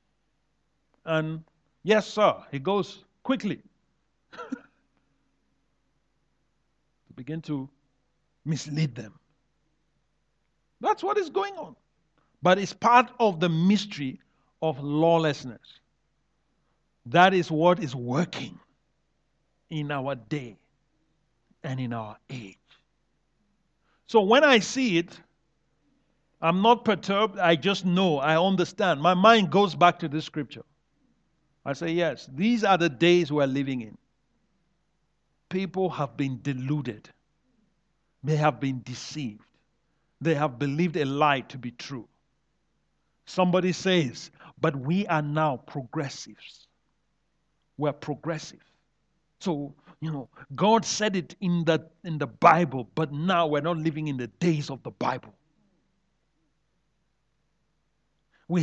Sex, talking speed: male, 120 wpm